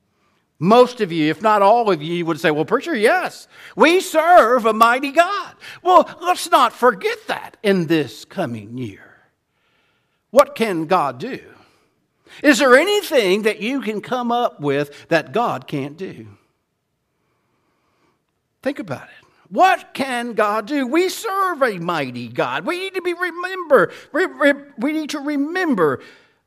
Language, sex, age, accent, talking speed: English, male, 60-79, American, 145 wpm